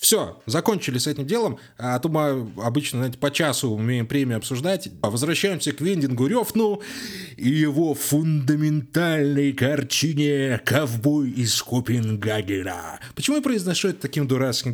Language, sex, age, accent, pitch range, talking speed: Russian, male, 20-39, native, 120-170 Hz, 135 wpm